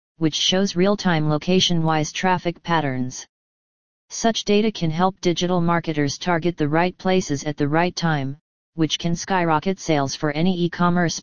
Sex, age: female, 40-59